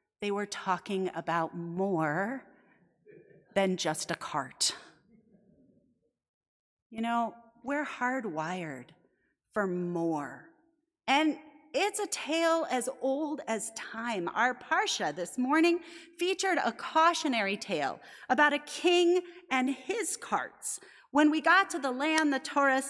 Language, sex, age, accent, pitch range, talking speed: English, female, 30-49, American, 215-330 Hz, 120 wpm